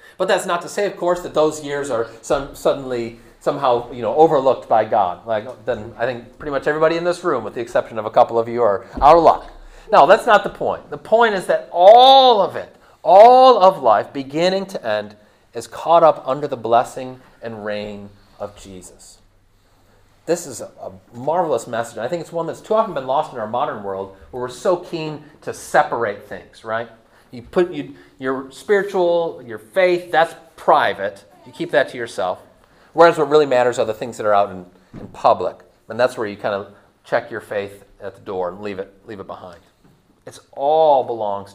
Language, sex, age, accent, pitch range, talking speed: English, male, 30-49, American, 115-180 Hz, 205 wpm